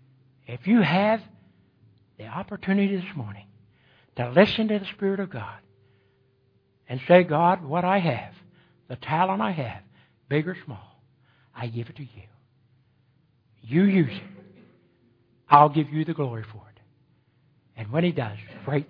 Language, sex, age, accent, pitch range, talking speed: English, male, 60-79, American, 130-185 Hz, 150 wpm